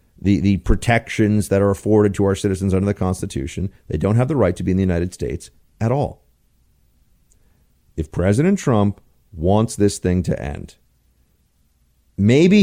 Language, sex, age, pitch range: English, male, 40-59, 90-130 Hz